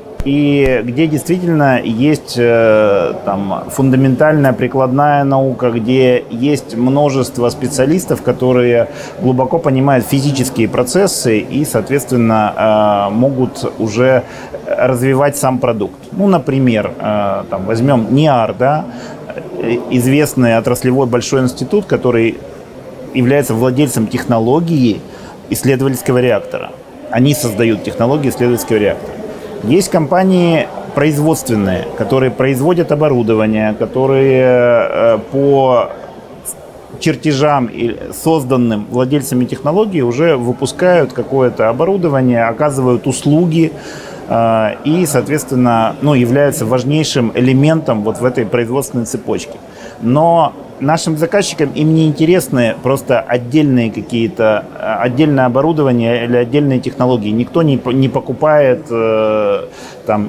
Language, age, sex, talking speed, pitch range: Russian, 30-49, male, 90 wpm, 120-145 Hz